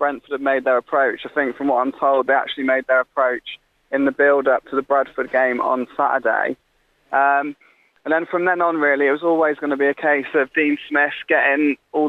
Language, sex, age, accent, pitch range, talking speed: English, male, 20-39, British, 130-145 Hz, 230 wpm